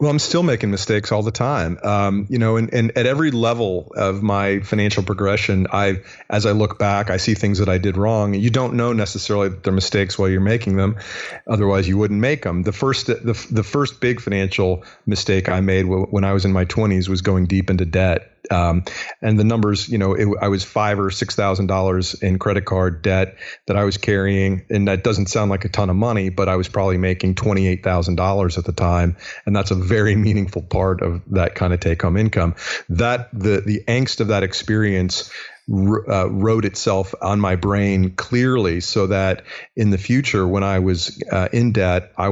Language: English